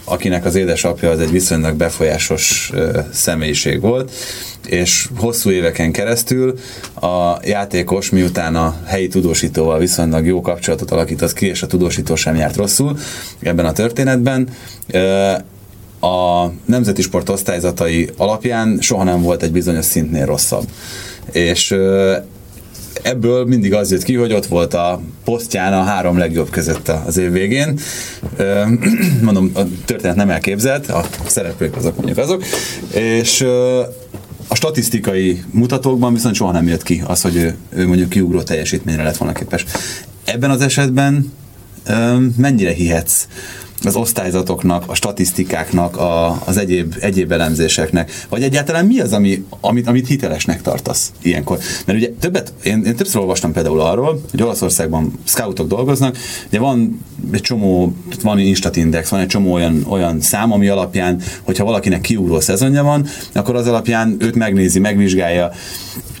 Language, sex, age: Hungarian, male, 30-49